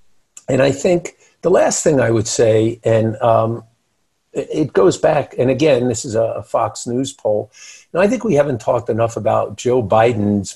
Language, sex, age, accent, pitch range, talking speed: English, male, 50-69, American, 110-130 Hz, 180 wpm